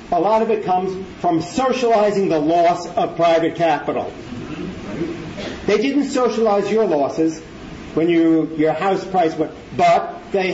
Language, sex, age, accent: English, male, 40-59, American